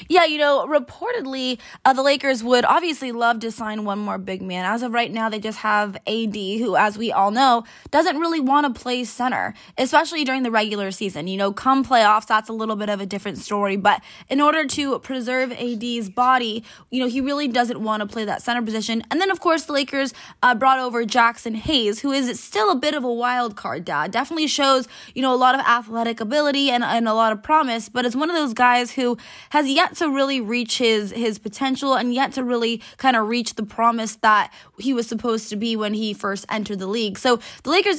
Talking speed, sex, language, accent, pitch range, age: 230 wpm, female, English, American, 220-275 Hz, 20-39